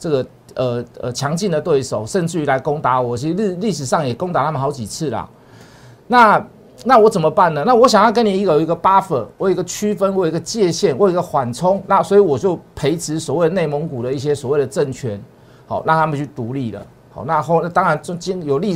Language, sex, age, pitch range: Chinese, male, 50-69, 140-205 Hz